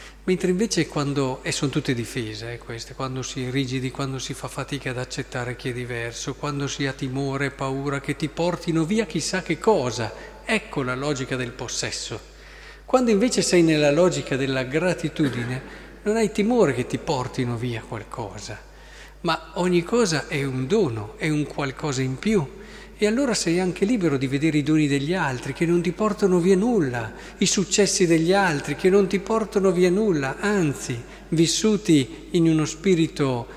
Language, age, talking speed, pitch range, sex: Italian, 40-59, 170 wpm, 135-185 Hz, male